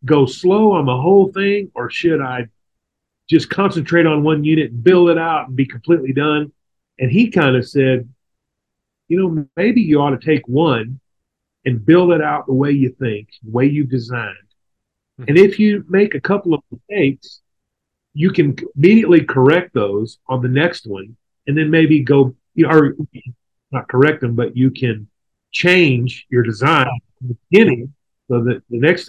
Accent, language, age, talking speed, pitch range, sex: American, English, 40-59, 180 wpm, 120-155 Hz, male